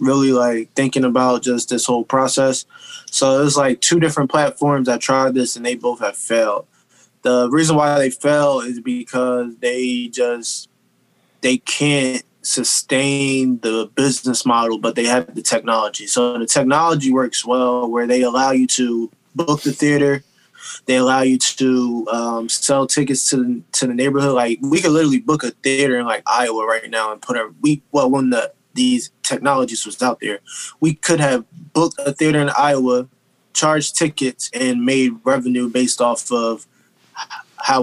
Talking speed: 170 wpm